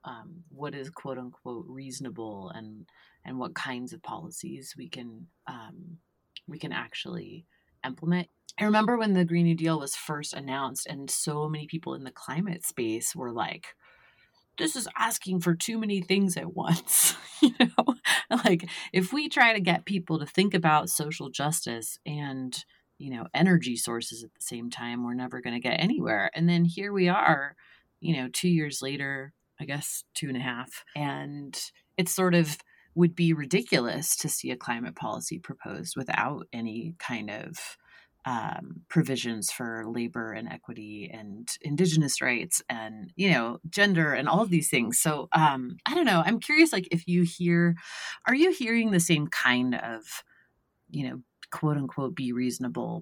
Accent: American